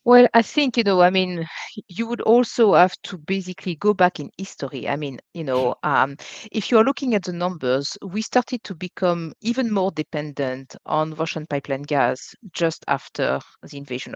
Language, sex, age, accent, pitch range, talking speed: English, female, 50-69, French, 145-190 Hz, 185 wpm